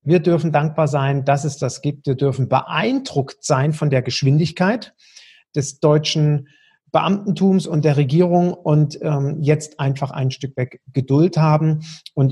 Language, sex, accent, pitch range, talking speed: German, male, German, 140-180 Hz, 150 wpm